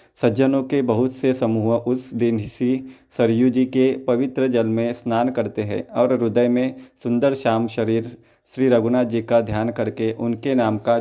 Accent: native